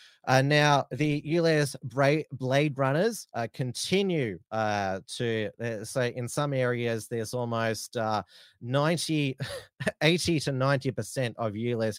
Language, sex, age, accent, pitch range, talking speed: English, male, 30-49, Australian, 115-140 Hz, 130 wpm